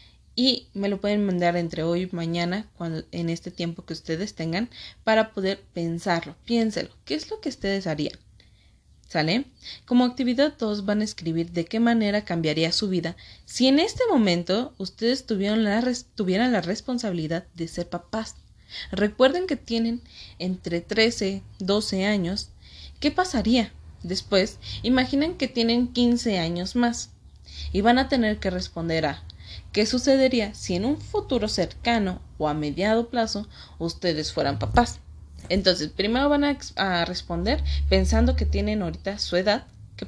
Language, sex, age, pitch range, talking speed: Spanish, female, 20-39, 170-235 Hz, 155 wpm